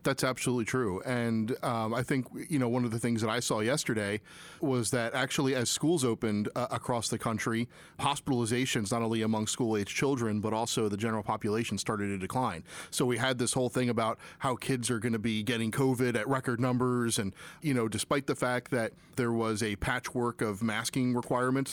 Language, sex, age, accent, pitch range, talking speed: English, male, 30-49, American, 110-130 Hz, 200 wpm